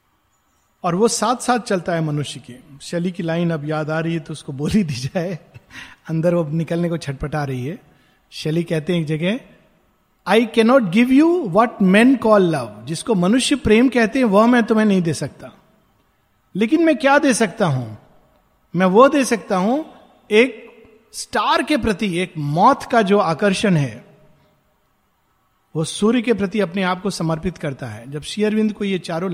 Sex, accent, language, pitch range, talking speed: male, native, Hindi, 160-230 Hz, 180 wpm